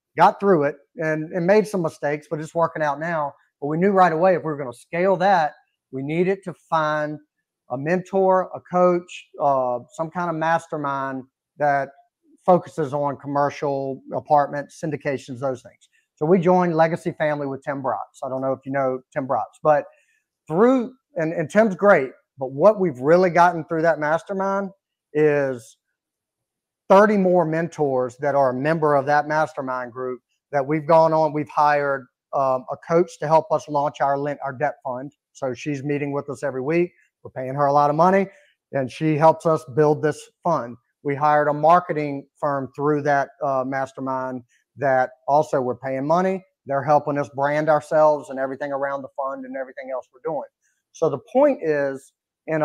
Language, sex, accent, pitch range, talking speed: English, male, American, 140-175 Hz, 180 wpm